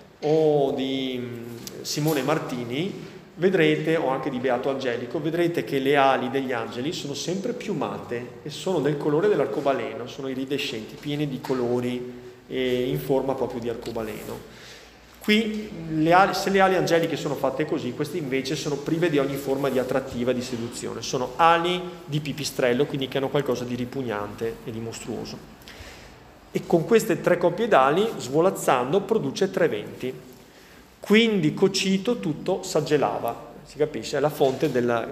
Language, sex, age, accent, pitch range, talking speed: Italian, male, 30-49, native, 130-175 Hz, 150 wpm